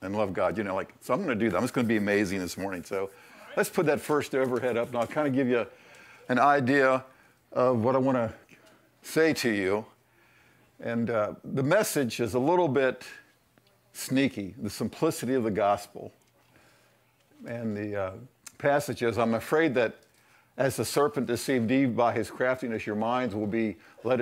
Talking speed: 195 wpm